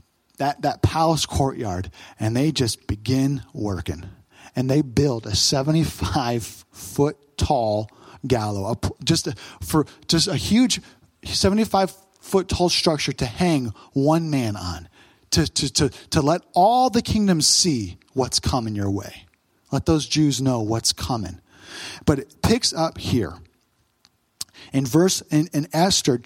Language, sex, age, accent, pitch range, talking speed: English, male, 40-59, American, 115-165 Hz, 140 wpm